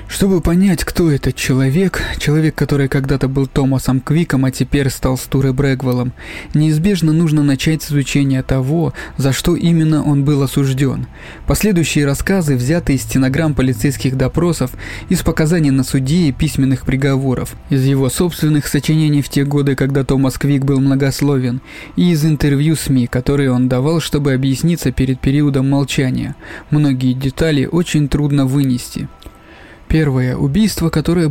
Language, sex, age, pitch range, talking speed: Russian, male, 20-39, 135-155 Hz, 140 wpm